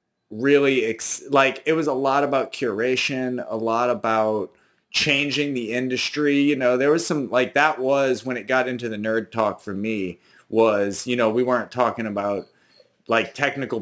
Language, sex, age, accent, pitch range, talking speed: English, male, 30-49, American, 100-125 Hz, 175 wpm